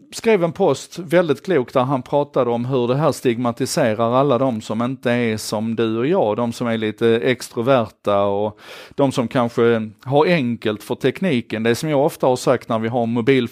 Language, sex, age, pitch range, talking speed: Swedish, male, 40-59, 115-140 Hz, 200 wpm